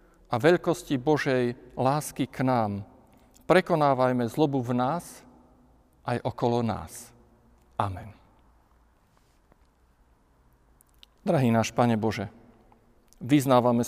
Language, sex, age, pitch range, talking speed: Slovak, male, 40-59, 115-145 Hz, 80 wpm